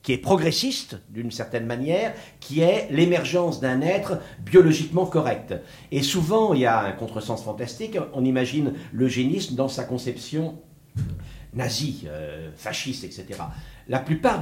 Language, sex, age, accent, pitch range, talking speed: French, male, 60-79, French, 120-165 Hz, 135 wpm